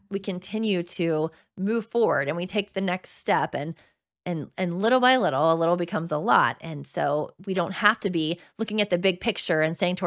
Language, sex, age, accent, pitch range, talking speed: English, female, 20-39, American, 175-230 Hz, 220 wpm